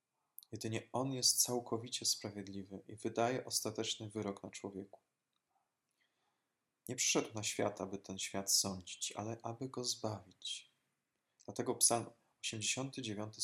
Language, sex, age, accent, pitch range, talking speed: Polish, male, 20-39, native, 105-125 Hz, 115 wpm